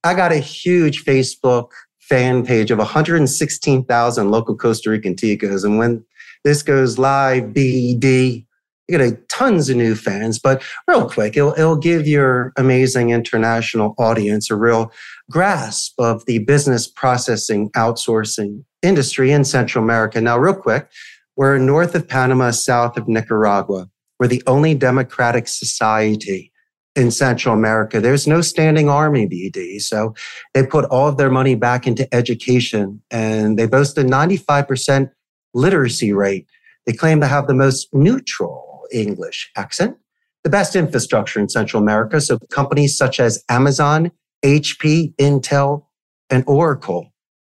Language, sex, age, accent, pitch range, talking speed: English, male, 40-59, American, 115-145 Hz, 145 wpm